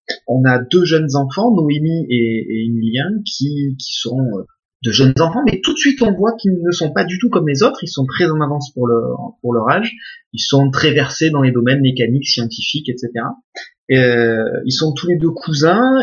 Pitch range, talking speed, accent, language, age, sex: 120-170 Hz, 215 wpm, French, French, 30-49, male